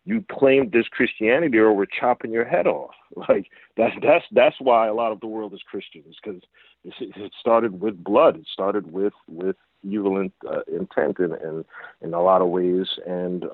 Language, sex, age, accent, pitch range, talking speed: English, male, 40-59, American, 90-115 Hz, 190 wpm